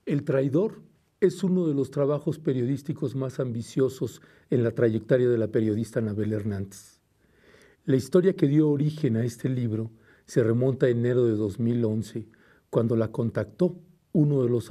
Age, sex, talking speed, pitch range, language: 50-69, male, 155 wpm, 115-140 Hz, Spanish